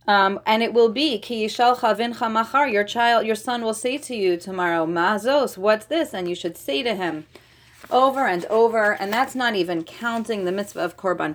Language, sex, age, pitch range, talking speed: English, female, 30-49, 165-220 Hz, 200 wpm